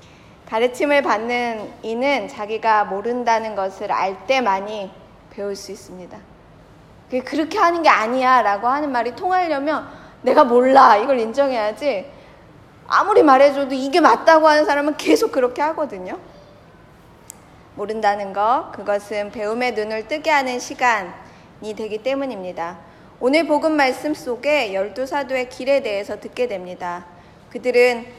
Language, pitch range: Korean, 210-285 Hz